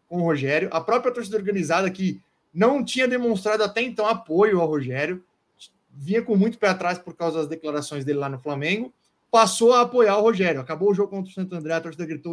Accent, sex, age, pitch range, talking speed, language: Brazilian, male, 20-39, 155-200 Hz, 215 wpm, Portuguese